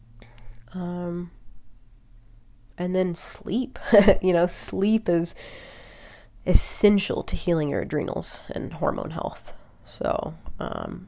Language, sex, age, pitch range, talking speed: English, female, 20-39, 140-175 Hz, 95 wpm